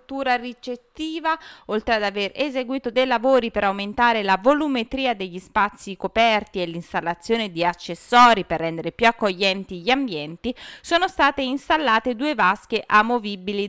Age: 30-49